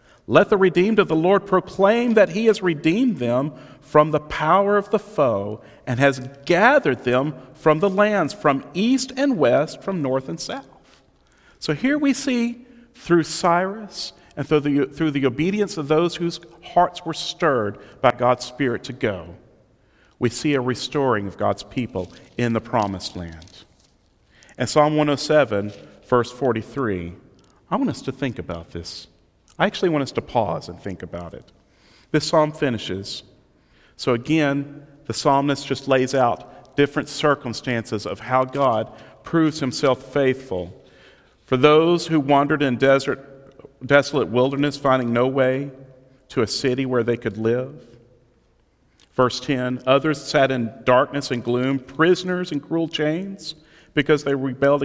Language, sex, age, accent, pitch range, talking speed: English, male, 40-59, American, 125-155 Hz, 155 wpm